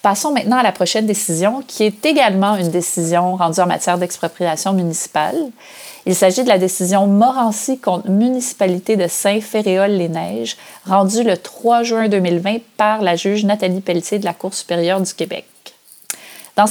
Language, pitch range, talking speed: English, 180-235 Hz, 155 wpm